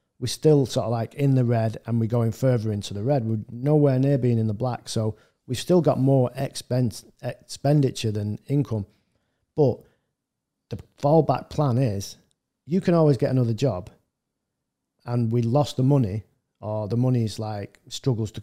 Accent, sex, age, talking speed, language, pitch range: British, male, 40-59, 175 wpm, English, 110-135 Hz